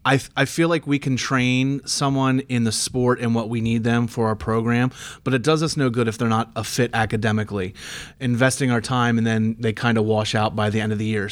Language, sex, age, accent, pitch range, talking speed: English, male, 30-49, American, 110-130 Hz, 255 wpm